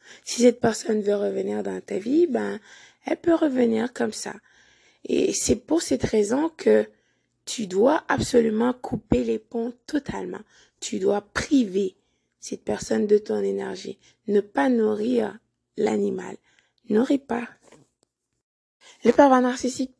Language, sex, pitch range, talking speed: French, female, 205-265 Hz, 130 wpm